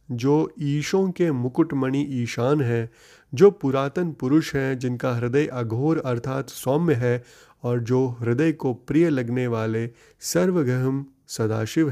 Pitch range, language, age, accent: 115-150 Hz, Hindi, 30-49, native